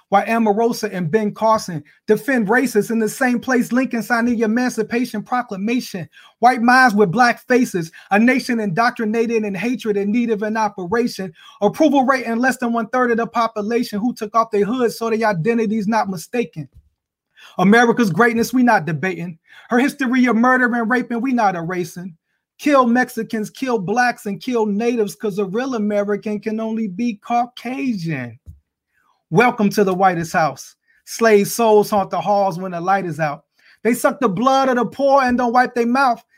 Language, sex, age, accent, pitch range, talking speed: English, male, 30-49, American, 185-240 Hz, 175 wpm